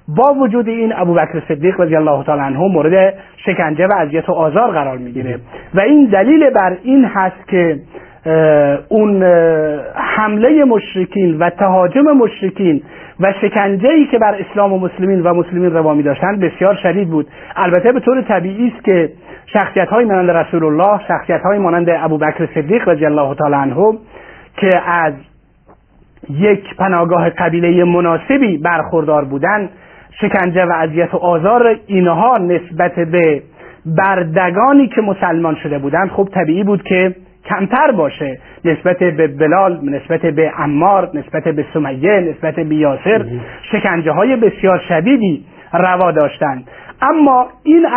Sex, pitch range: male, 160-200 Hz